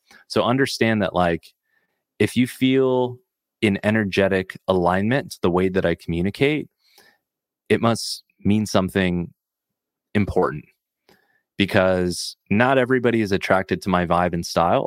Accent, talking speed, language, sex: American, 125 wpm, English, male